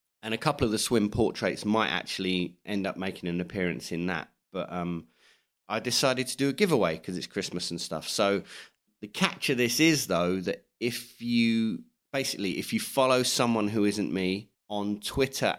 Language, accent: English, British